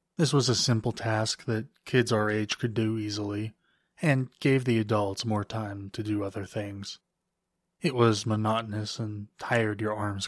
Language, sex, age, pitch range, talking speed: English, male, 20-39, 105-120 Hz, 170 wpm